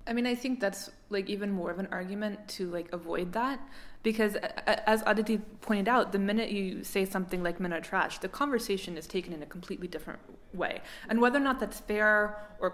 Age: 20-39